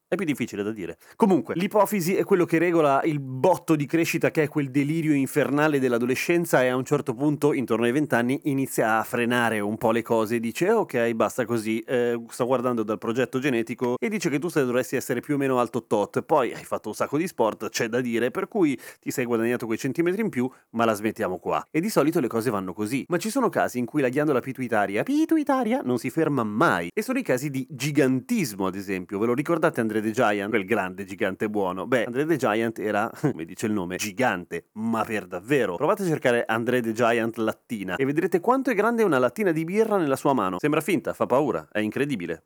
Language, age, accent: Italian, 30-49, native